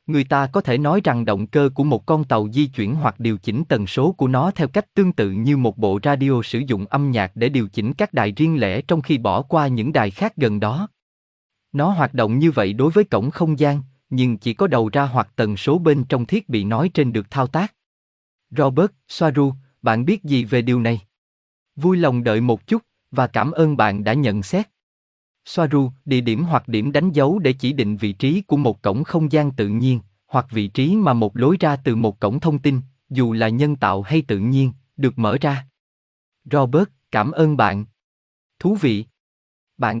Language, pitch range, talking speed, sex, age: Vietnamese, 110-150 Hz, 215 wpm, male, 20-39